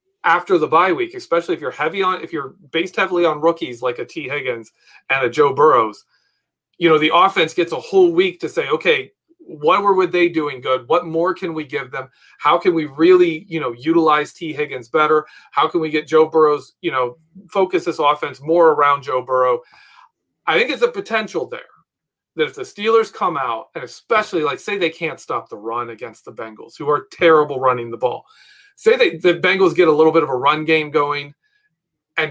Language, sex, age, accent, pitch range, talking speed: English, male, 40-59, American, 150-200 Hz, 210 wpm